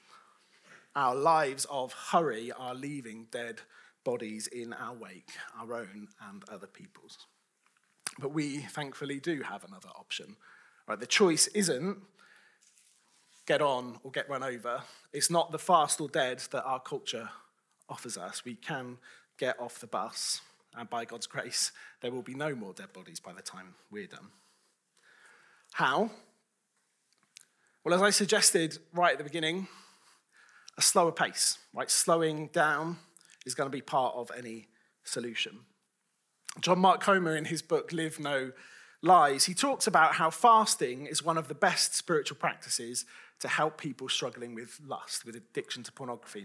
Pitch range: 130-195 Hz